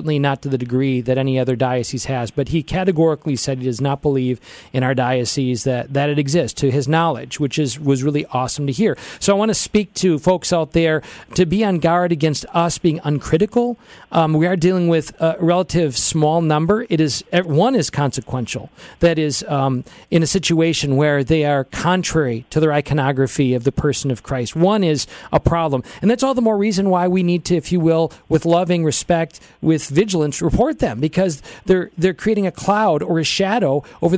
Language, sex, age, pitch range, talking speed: English, male, 40-59, 140-185 Hz, 205 wpm